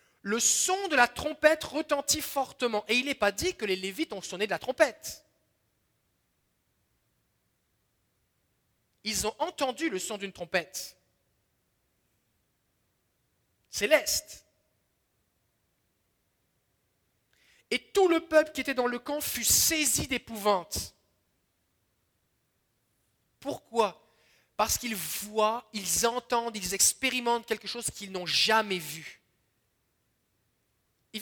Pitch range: 190-275 Hz